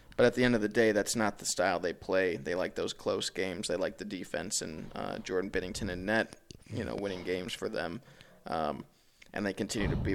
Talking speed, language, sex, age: 235 wpm, English, male, 20-39